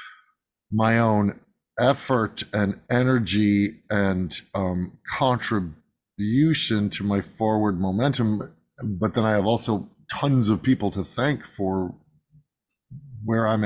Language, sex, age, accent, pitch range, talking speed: English, male, 50-69, American, 100-130 Hz, 110 wpm